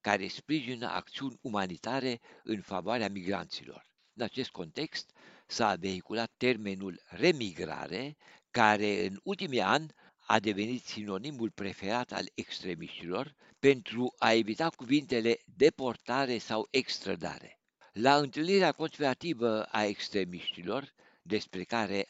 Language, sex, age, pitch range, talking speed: Romanian, male, 60-79, 100-140 Hz, 105 wpm